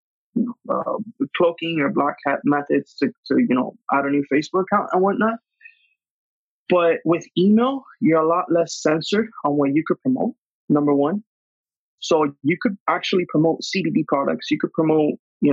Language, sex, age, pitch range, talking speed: English, male, 20-39, 150-200 Hz, 165 wpm